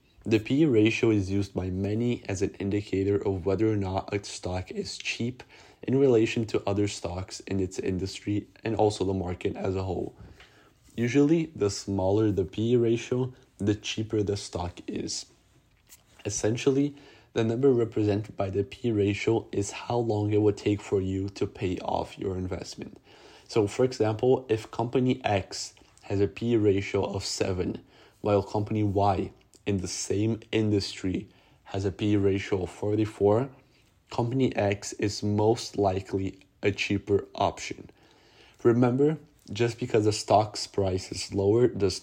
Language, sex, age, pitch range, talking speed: English, male, 20-39, 100-115 Hz, 155 wpm